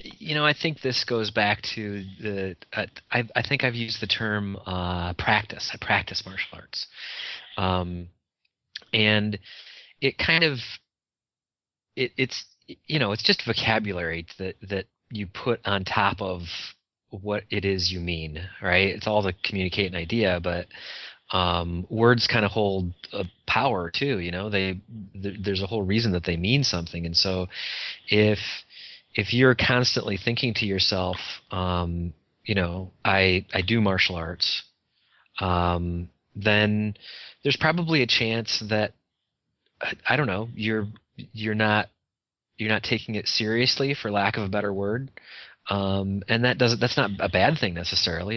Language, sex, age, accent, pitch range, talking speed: English, male, 30-49, American, 95-115 Hz, 155 wpm